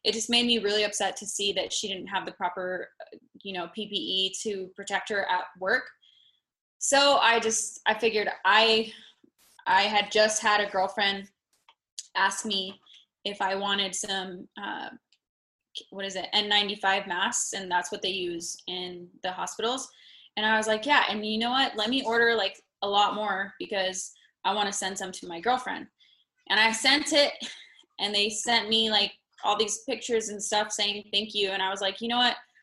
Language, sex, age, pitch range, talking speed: English, female, 20-39, 195-220 Hz, 190 wpm